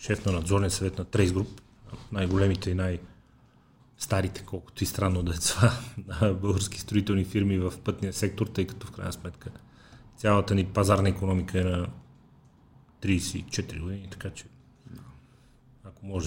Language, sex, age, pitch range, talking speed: Bulgarian, male, 40-59, 95-115 Hz, 150 wpm